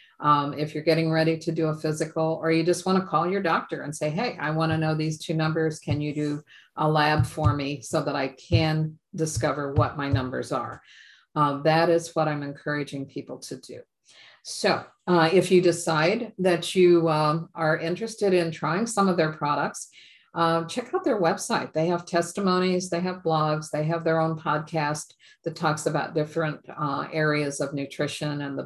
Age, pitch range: 50-69, 150-170 Hz